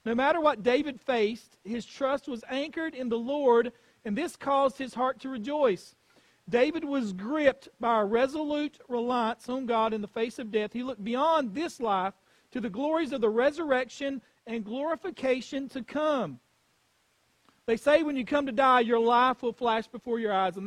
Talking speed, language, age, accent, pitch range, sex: 185 wpm, English, 40-59, American, 230-275 Hz, male